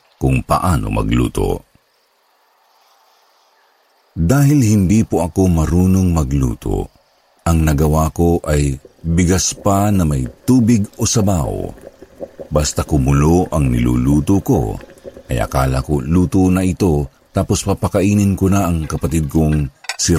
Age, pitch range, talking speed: 50-69, 75-95 Hz, 115 wpm